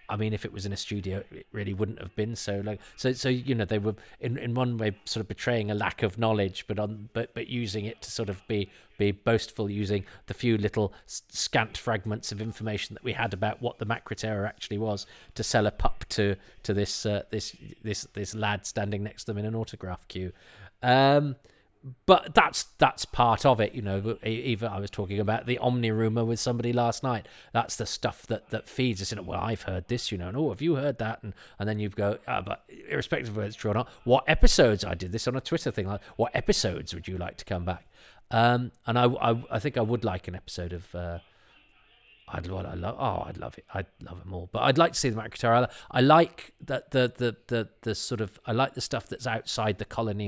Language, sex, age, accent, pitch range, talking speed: English, male, 40-59, British, 100-120 Hz, 240 wpm